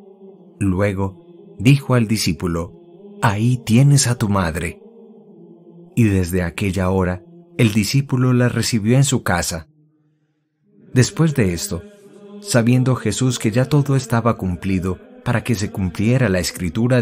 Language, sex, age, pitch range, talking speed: English, male, 30-49, 100-155 Hz, 125 wpm